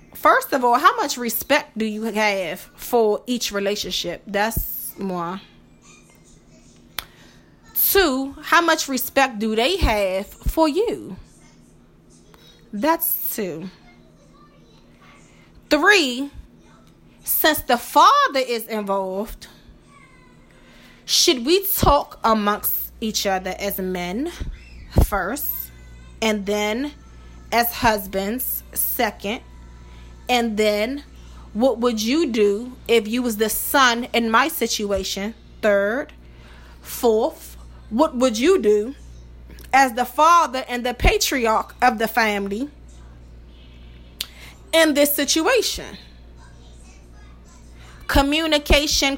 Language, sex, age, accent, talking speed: English, female, 20-39, American, 95 wpm